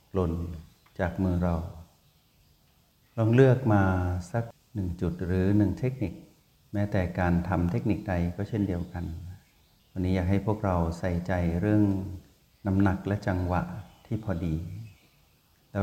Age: 60-79